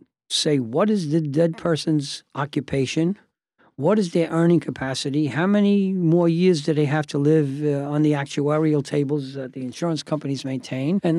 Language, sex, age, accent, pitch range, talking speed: English, male, 60-79, American, 140-170 Hz, 170 wpm